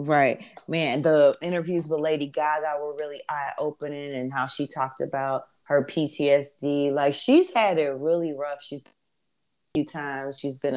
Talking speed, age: 160 wpm, 30-49